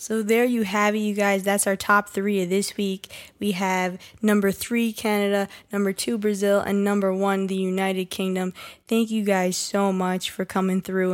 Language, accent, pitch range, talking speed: English, American, 185-210 Hz, 195 wpm